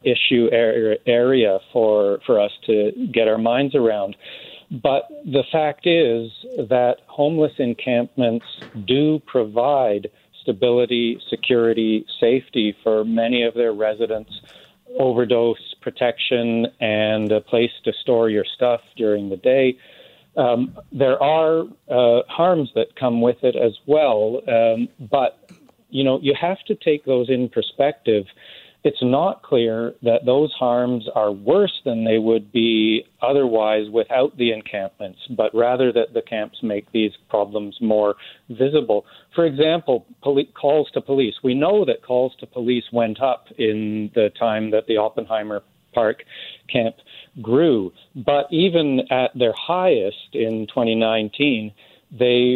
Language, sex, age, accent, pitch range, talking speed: English, male, 40-59, American, 110-135 Hz, 135 wpm